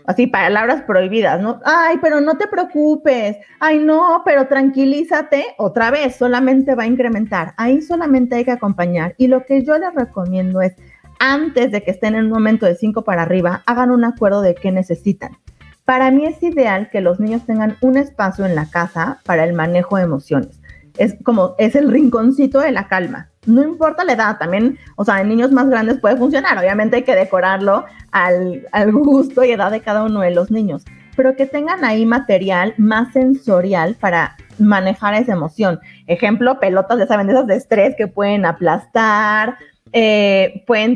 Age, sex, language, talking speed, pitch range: 30-49, female, Spanish, 185 wpm, 195-260 Hz